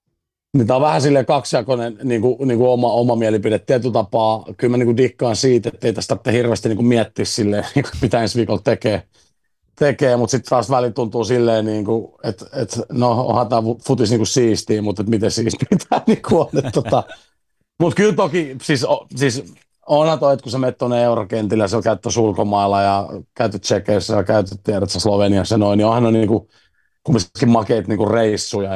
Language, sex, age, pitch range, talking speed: Finnish, male, 40-59, 105-120 Hz, 175 wpm